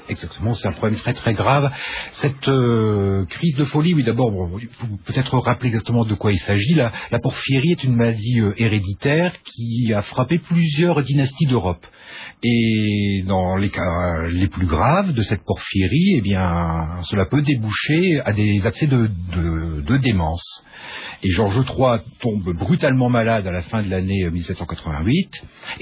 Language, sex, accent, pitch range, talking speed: French, male, French, 100-150 Hz, 170 wpm